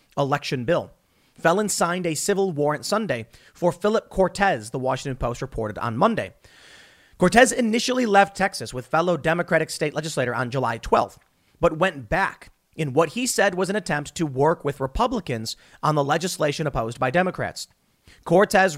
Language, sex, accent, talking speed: English, male, American, 160 wpm